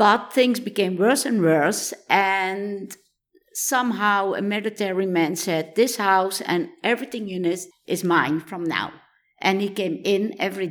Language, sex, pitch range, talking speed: English, female, 170-225 Hz, 150 wpm